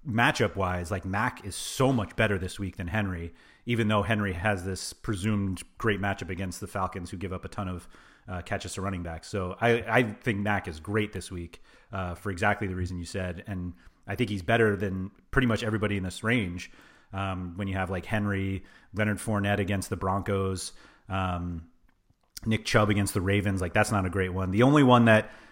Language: English